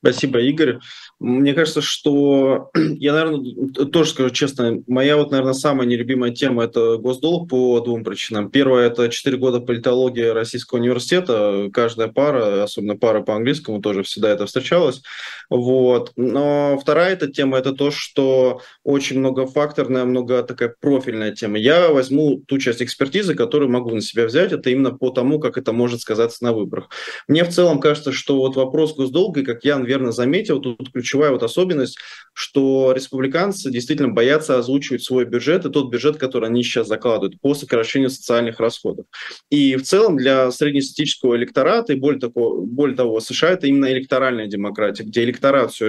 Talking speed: 165 wpm